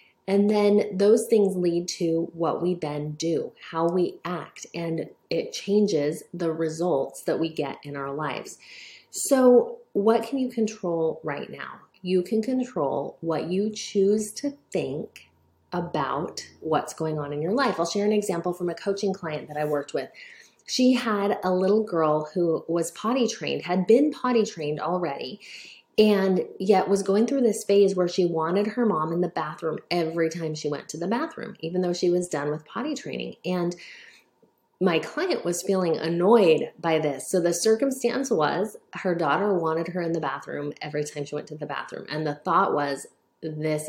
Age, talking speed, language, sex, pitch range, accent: 30-49, 180 wpm, English, female, 160-215 Hz, American